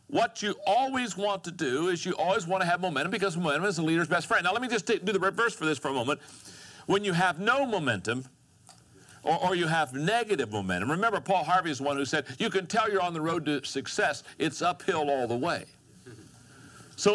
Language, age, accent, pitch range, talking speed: English, 60-79, American, 135-190 Hz, 235 wpm